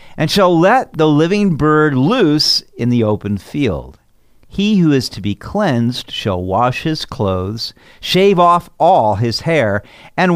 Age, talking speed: 50-69, 155 wpm